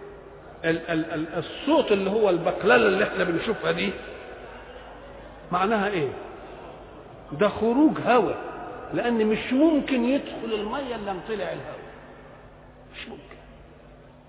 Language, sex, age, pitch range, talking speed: English, male, 50-69, 180-260 Hz, 95 wpm